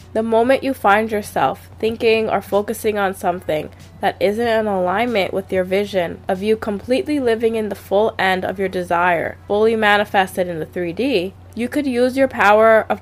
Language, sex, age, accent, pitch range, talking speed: English, female, 20-39, American, 180-225 Hz, 180 wpm